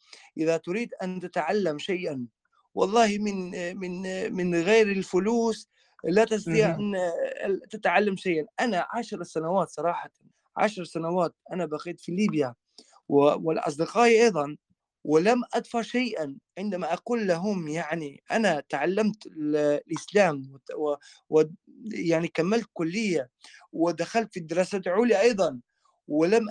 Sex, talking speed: male, 110 wpm